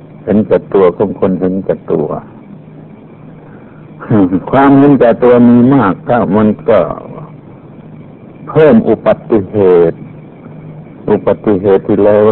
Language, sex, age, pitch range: Thai, male, 60-79, 105-140 Hz